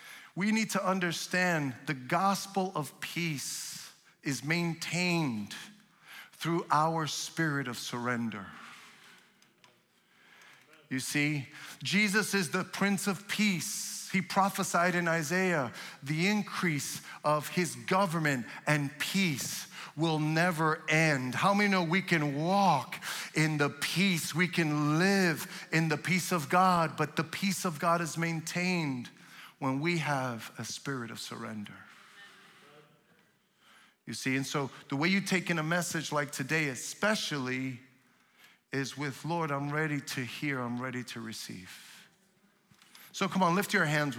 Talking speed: 135 wpm